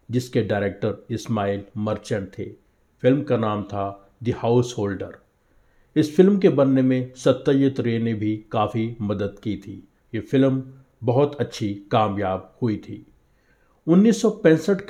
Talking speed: 130 wpm